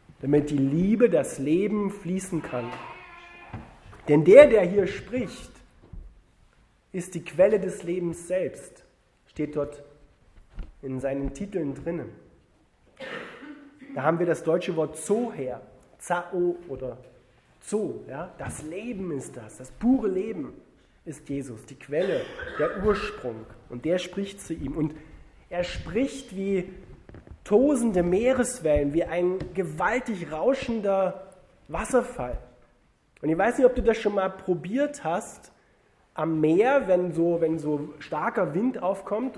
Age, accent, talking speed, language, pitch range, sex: 30-49, German, 125 wpm, German, 140-200 Hz, male